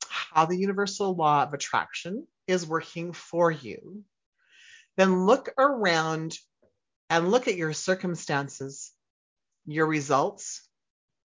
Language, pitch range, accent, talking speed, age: English, 140-185 Hz, American, 105 wpm, 40-59